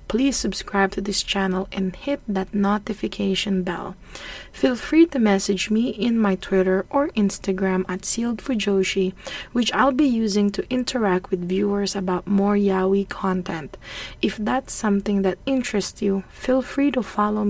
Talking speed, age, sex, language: 150 wpm, 20-39, female, English